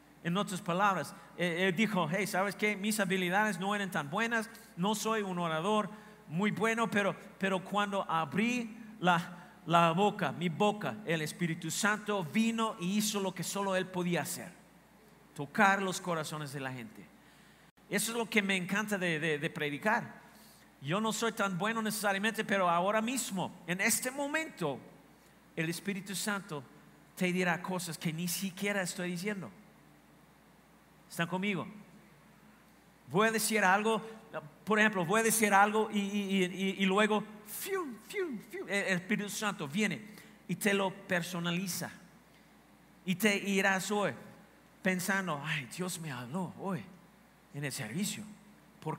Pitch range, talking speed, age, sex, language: 175-210 Hz, 150 wpm, 50-69, male, Spanish